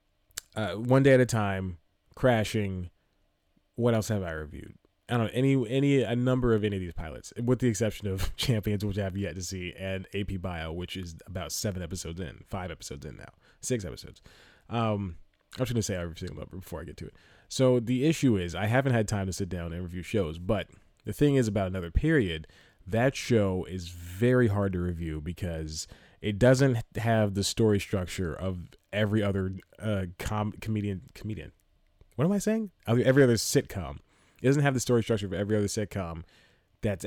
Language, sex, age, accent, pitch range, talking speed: English, male, 20-39, American, 90-115 Hz, 200 wpm